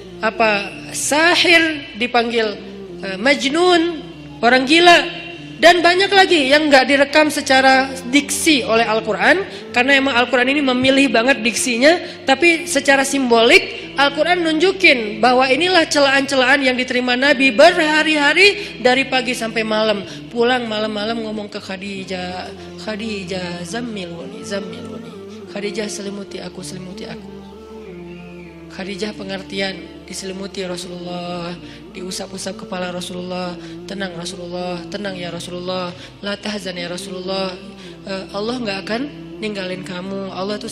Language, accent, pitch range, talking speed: Indonesian, native, 190-255 Hz, 110 wpm